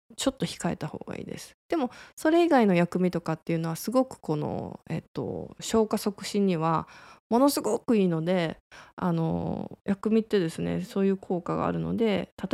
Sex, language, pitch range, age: female, Japanese, 170-225 Hz, 20-39